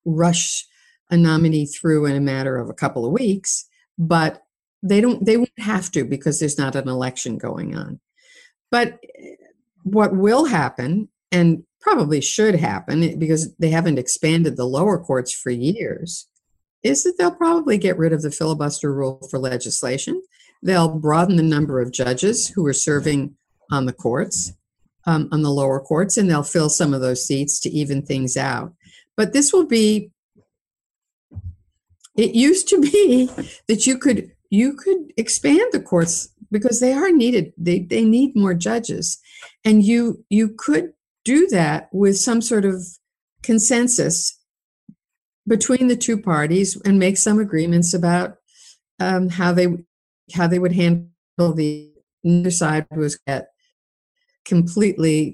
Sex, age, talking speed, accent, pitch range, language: female, 50-69, 150 wpm, American, 155-230 Hz, English